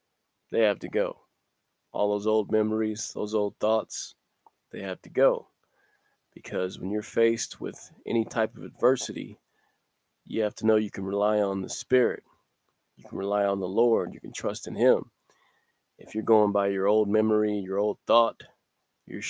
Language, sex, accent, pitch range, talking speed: English, male, American, 100-115 Hz, 175 wpm